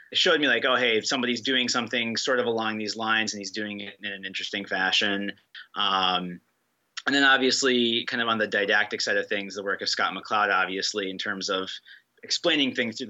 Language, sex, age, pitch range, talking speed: English, male, 30-49, 95-110 Hz, 210 wpm